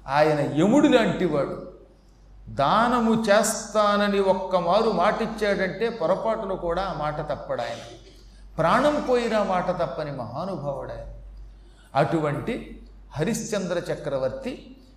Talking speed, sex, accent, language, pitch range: 80 wpm, male, native, Telugu, 150-210 Hz